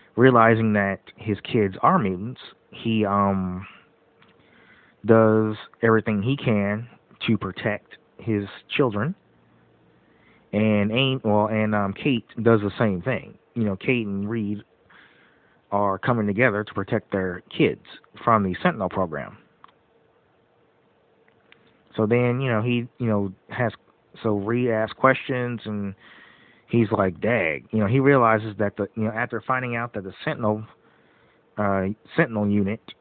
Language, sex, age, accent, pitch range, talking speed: English, male, 30-49, American, 100-115 Hz, 135 wpm